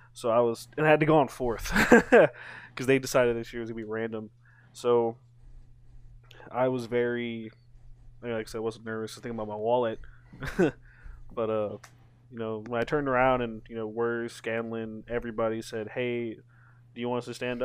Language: English